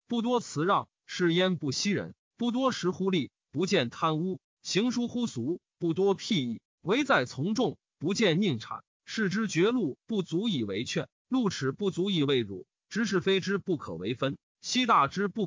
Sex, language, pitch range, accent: male, Chinese, 150-210 Hz, native